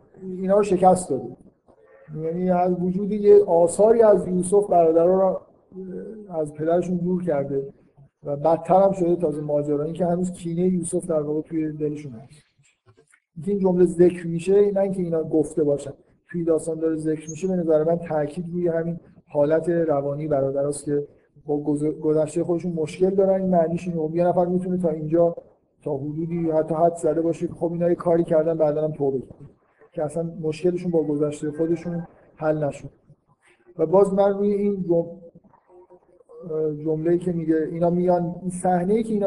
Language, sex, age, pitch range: Persian, male, 50-69, 155-185 Hz